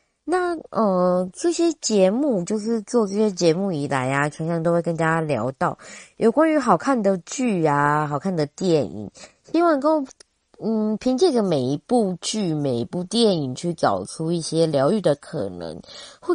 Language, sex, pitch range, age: Chinese, female, 155-240 Hz, 20-39